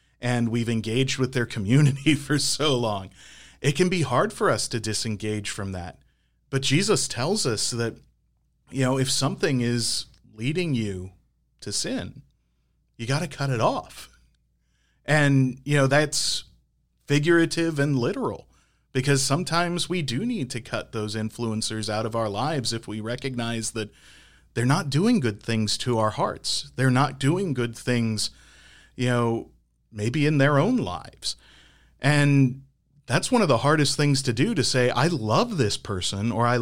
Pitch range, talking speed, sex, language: 110-140 Hz, 165 wpm, male, English